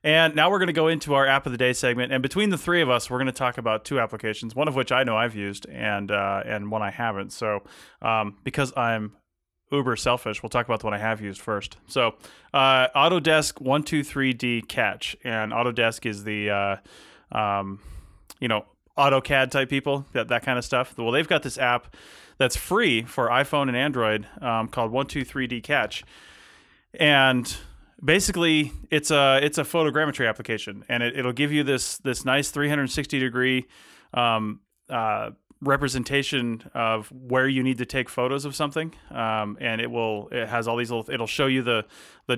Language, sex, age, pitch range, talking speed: English, male, 30-49, 115-140 Hz, 195 wpm